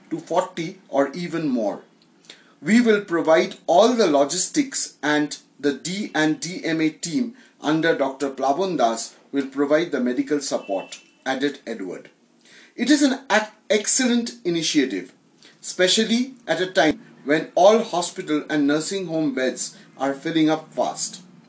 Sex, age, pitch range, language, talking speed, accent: male, 30-49, 150-220 Hz, English, 130 wpm, Indian